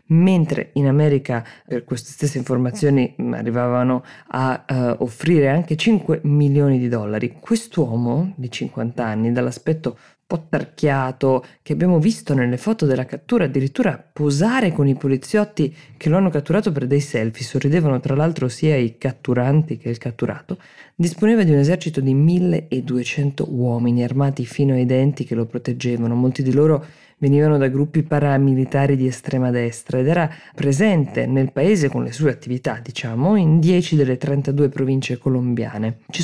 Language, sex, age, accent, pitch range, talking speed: Italian, female, 20-39, native, 125-155 Hz, 150 wpm